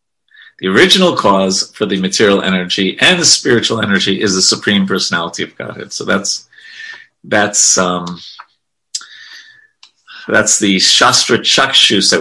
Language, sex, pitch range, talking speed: English, male, 100-145 Hz, 130 wpm